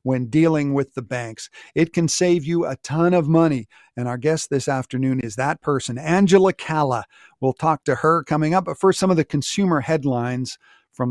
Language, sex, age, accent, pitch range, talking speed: English, male, 50-69, American, 130-180 Hz, 200 wpm